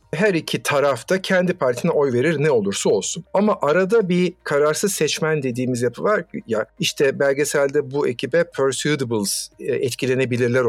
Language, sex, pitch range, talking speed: Turkish, male, 140-195 Hz, 145 wpm